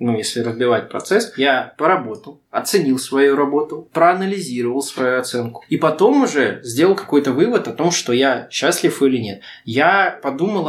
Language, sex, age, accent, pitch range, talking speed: Russian, male, 20-39, native, 120-150 Hz, 150 wpm